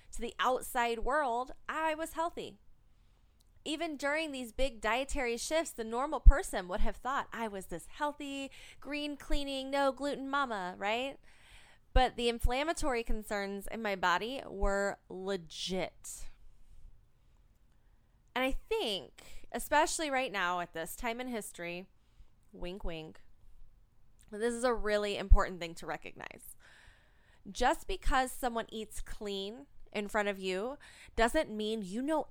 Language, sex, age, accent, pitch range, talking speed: English, female, 20-39, American, 190-260 Hz, 125 wpm